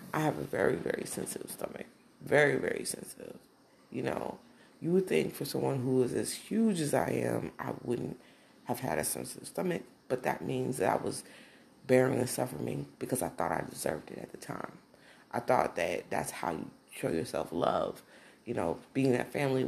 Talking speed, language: 195 wpm, English